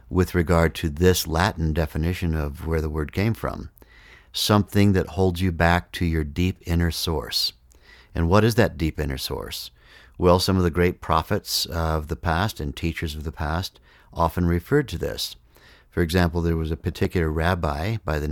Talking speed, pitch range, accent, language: 185 wpm, 80-90 Hz, American, English